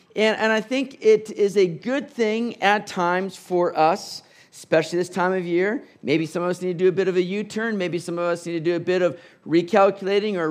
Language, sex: English, male